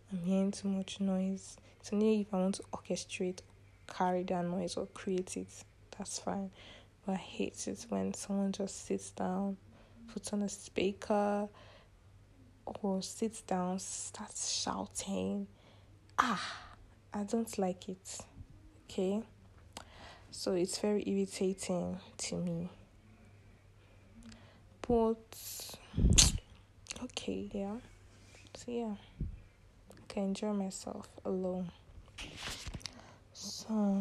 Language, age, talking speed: English, 10-29, 105 wpm